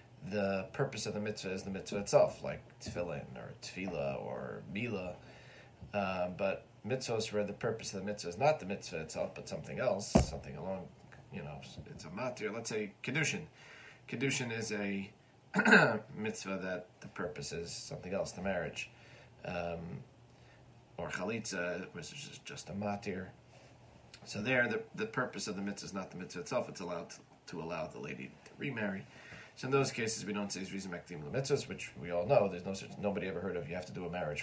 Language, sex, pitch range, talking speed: English, male, 95-110 Hz, 190 wpm